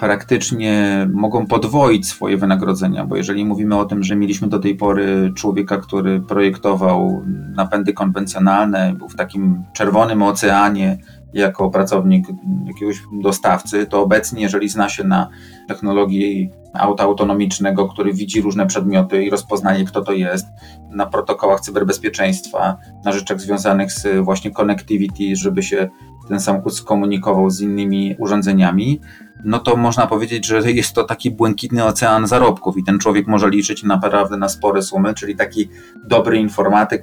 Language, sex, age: Polish, male, 30-49